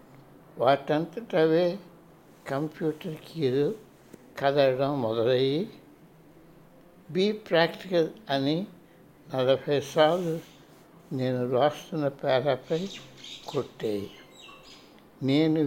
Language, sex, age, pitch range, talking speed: Telugu, male, 60-79, 135-180 Hz, 55 wpm